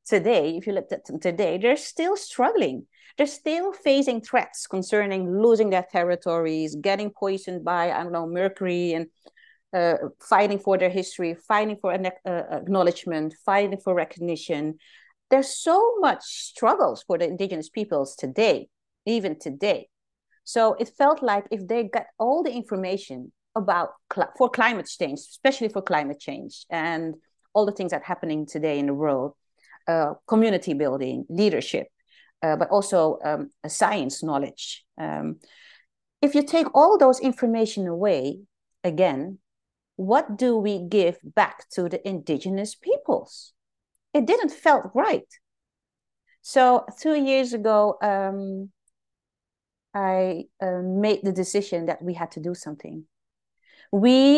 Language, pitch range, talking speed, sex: English, 175-245 Hz, 145 wpm, female